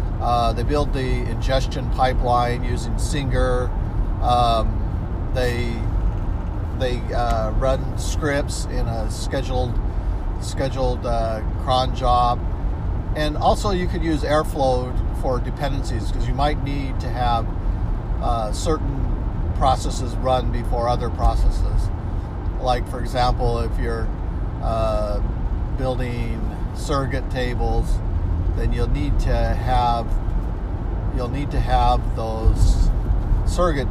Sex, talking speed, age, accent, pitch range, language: male, 110 wpm, 50-69, American, 90-120 Hz, English